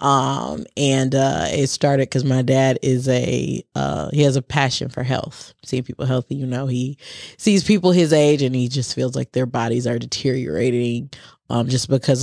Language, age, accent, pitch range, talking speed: English, 20-39, American, 125-150 Hz, 190 wpm